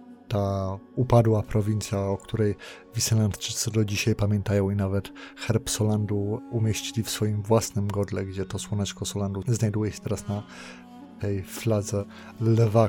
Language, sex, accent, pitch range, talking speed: Polish, male, native, 105-130 Hz, 135 wpm